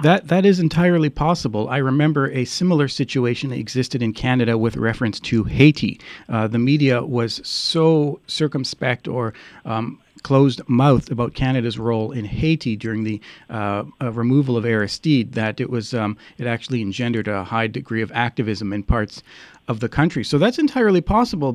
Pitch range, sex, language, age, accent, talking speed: 115-145 Hz, male, English, 40-59, American, 170 wpm